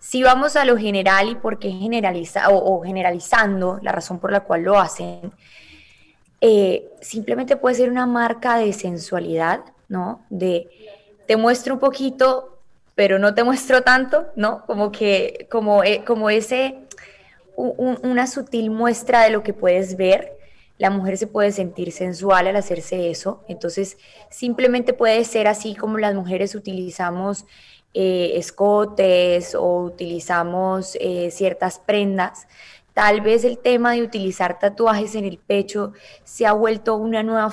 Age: 20-39